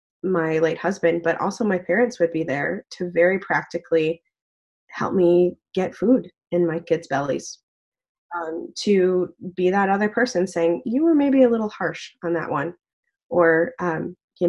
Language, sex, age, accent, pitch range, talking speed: English, female, 20-39, American, 165-210 Hz, 165 wpm